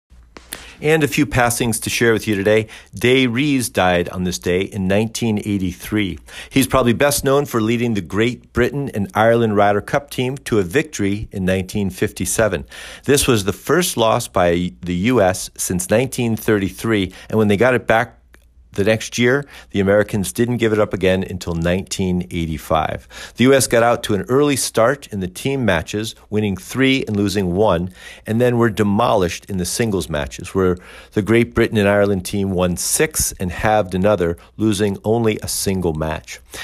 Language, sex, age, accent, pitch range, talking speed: English, male, 50-69, American, 90-115 Hz, 175 wpm